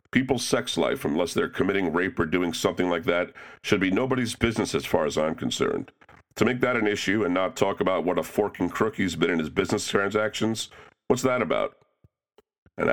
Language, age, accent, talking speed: English, 40-59, American, 205 wpm